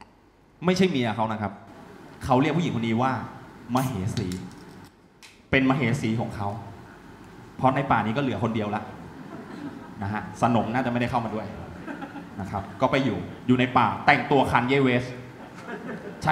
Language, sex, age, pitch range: Thai, male, 20-39, 115-165 Hz